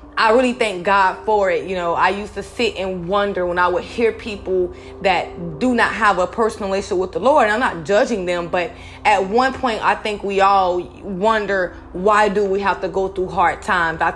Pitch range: 185-225 Hz